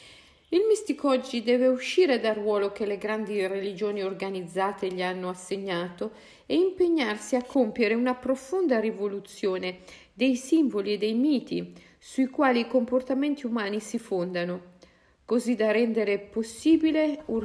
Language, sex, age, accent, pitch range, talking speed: Italian, female, 50-69, native, 180-245 Hz, 135 wpm